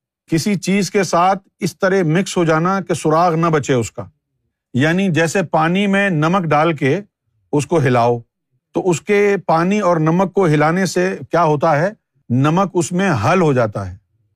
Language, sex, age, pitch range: Urdu, male, 50-69, 135-185 Hz